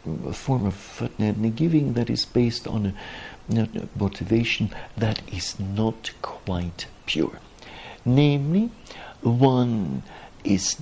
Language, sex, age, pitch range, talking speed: English, male, 60-79, 95-125 Hz, 100 wpm